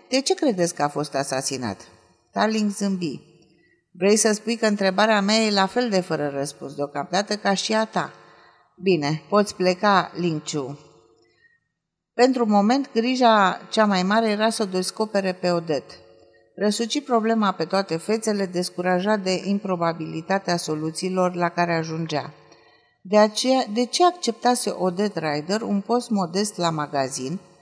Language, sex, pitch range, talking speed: Romanian, female, 170-220 Hz, 145 wpm